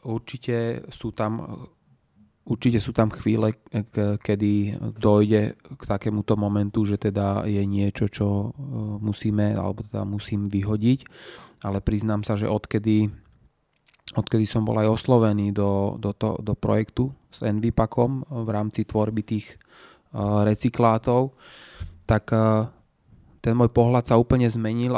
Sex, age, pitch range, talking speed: male, 20-39, 105-120 Hz, 125 wpm